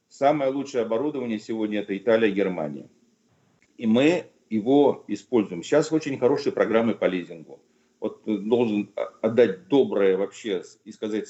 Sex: male